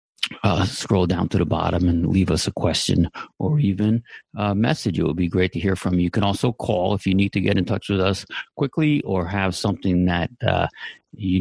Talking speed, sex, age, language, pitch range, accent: 225 wpm, male, 50-69, English, 90-110 Hz, American